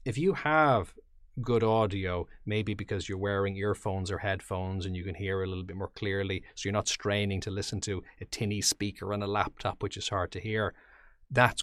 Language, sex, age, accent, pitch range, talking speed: English, male, 30-49, Irish, 90-105 Hz, 205 wpm